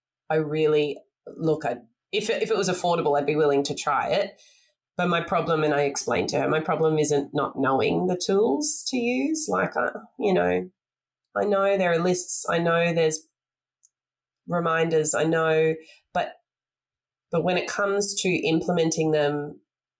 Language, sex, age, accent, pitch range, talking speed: English, female, 20-39, Australian, 145-180 Hz, 165 wpm